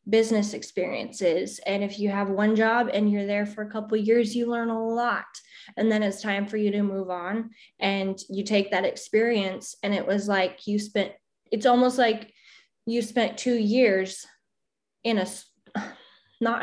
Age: 10-29